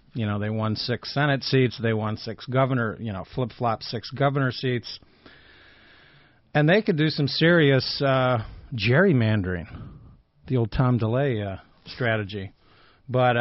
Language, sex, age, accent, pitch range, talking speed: English, male, 50-69, American, 115-135 Hz, 145 wpm